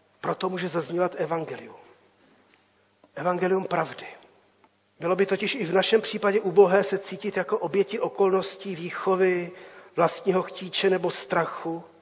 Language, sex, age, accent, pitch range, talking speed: Czech, male, 40-59, native, 185-215 Hz, 120 wpm